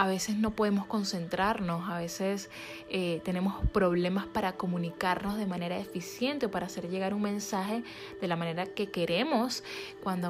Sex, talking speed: female, 155 wpm